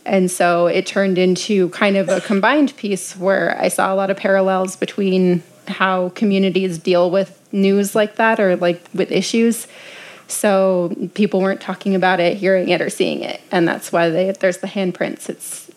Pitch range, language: 185-200 Hz, English